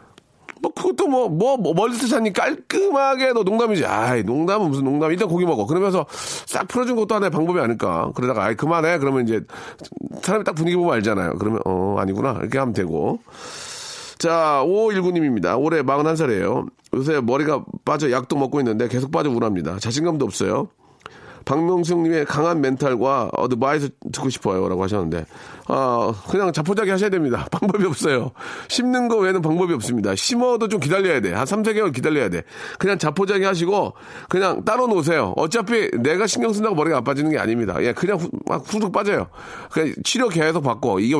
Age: 40-59